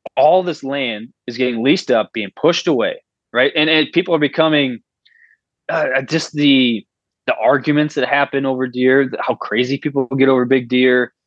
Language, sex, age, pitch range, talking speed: English, male, 20-39, 120-150 Hz, 170 wpm